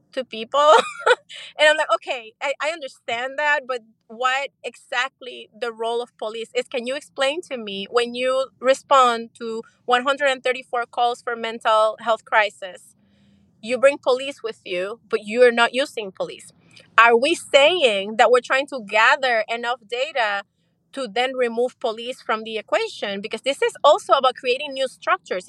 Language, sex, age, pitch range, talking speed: English, female, 30-49, 225-295 Hz, 160 wpm